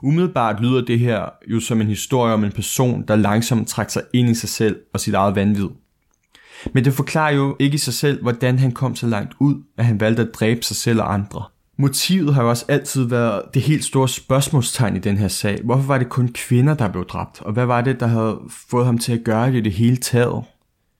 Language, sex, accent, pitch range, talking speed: Danish, male, native, 105-130 Hz, 240 wpm